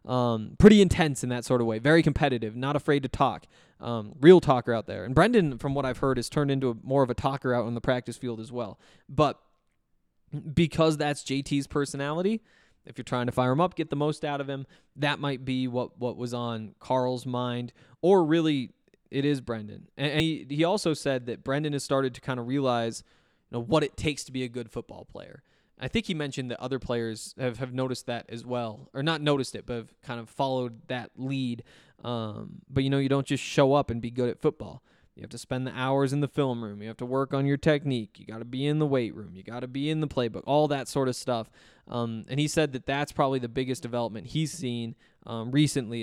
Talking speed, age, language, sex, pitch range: 240 wpm, 20-39, English, male, 120-145 Hz